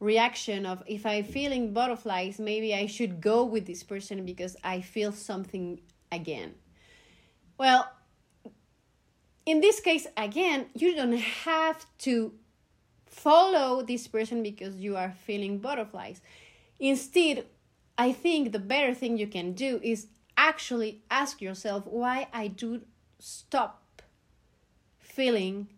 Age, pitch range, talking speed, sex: 30-49, 210-265 Hz, 125 wpm, female